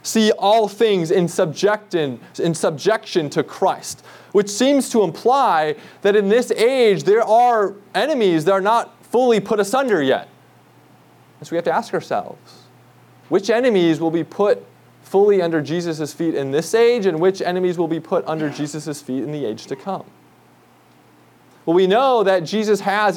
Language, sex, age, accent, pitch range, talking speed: English, male, 20-39, American, 150-205 Hz, 165 wpm